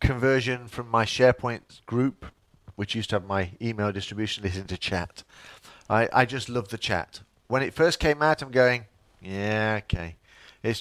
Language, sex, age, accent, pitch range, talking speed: English, male, 40-59, British, 95-120 Hz, 170 wpm